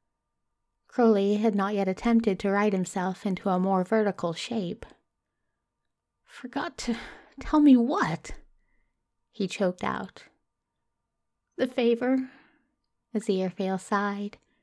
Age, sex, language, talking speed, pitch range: 30-49, female, English, 105 wpm, 190-225 Hz